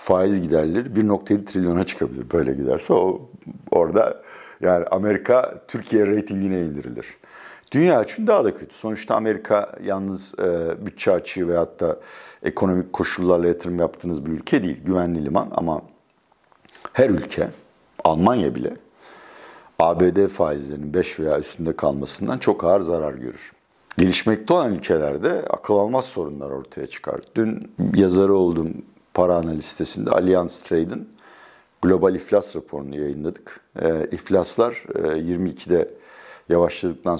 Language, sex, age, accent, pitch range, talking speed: Turkish, male, 60-79, native, 80-100 Hz, 120 wpm